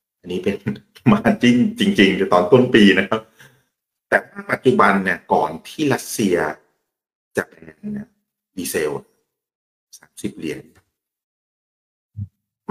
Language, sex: Thai, male